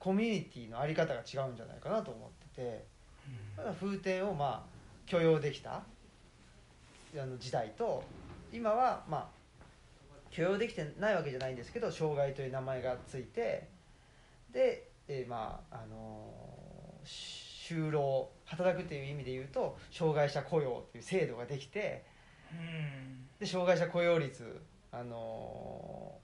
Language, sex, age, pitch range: Japanese, male, 40-59, 125-165 Hz